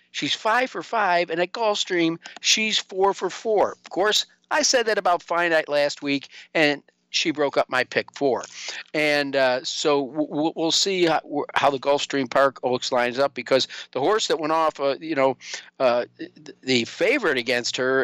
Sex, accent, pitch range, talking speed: male, American, 125-160 Hz, 175 wpm